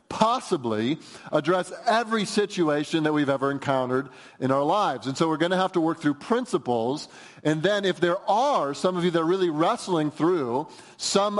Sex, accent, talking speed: male, American, 185 wpm